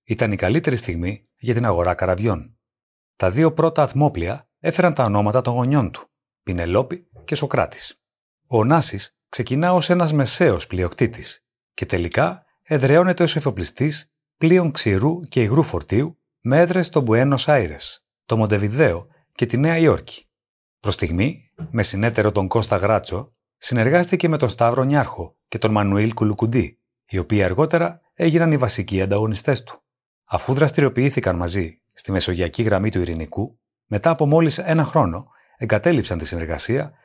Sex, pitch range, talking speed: male, 100-150 Hz, 145 wpm